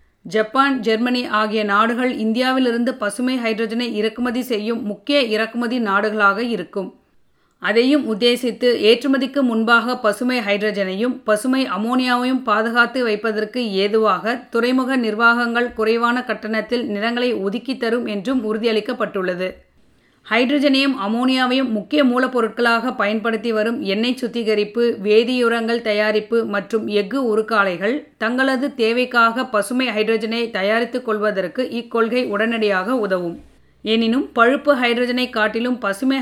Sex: female